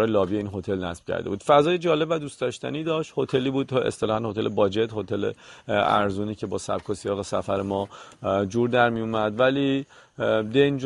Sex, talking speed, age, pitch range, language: male, 175 wpm, 40-59, 105-135 Hz, Persian